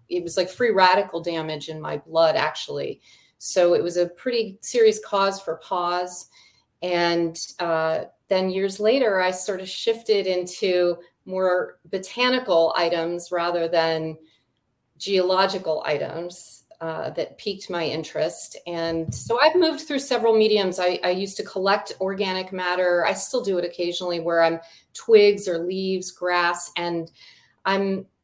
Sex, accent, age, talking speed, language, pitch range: female, American, 40-59, 145 wpm, English, 170-195 Hz